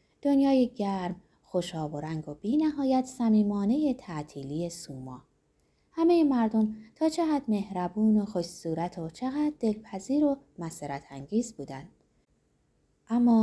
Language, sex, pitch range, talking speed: Persian, female, 170-260 Hz, 110 wpm